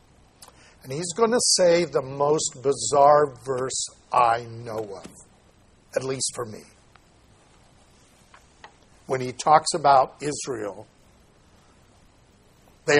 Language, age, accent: English, 60-79, American